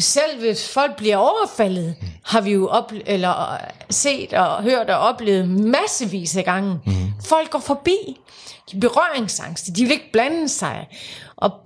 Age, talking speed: 30-49, 150 wpm